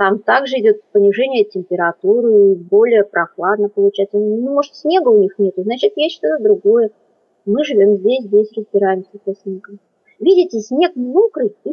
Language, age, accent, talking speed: Russian, 30-49, native, 145 wpm